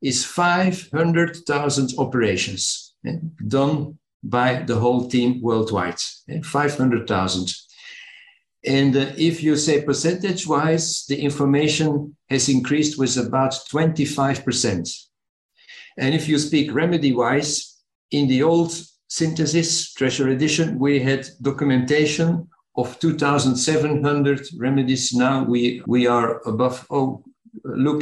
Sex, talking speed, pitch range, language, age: male, 105 wpm, 130-160 Hz, English, 50-69